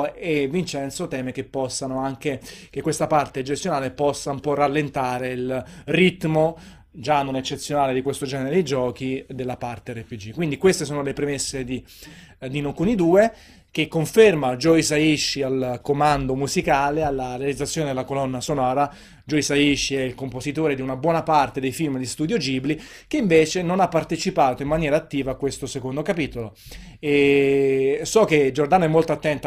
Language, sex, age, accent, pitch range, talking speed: Italian, male, 30-49, native, 135-160 Hz, 165 wpm